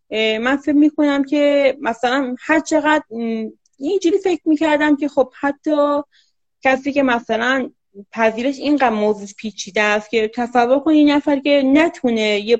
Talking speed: 140 wpm